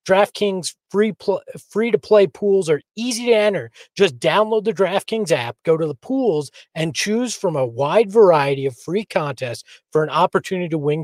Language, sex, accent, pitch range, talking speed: English, male, American, 155-215 Hz, 185 wpm